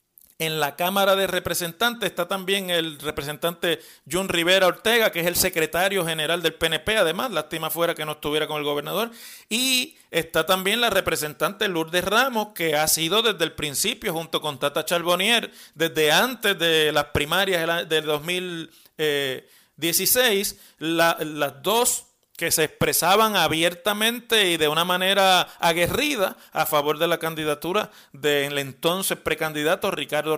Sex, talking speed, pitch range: male, 140 wpm, 155-195 Hz